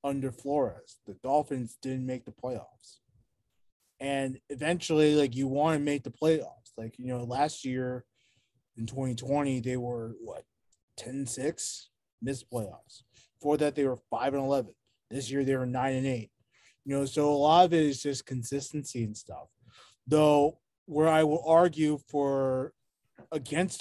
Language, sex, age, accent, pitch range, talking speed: English, male, 20-39, American, 125-150 Hz, 155 wpm